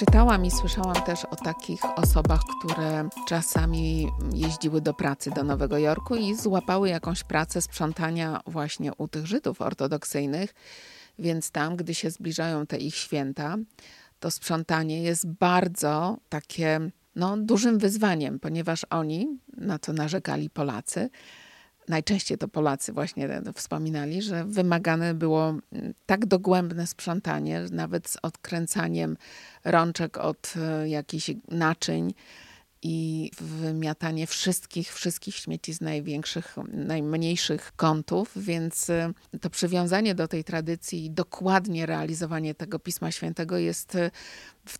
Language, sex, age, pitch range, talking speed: Polish, female, 50-69, 155-180 Hz, 115 wpm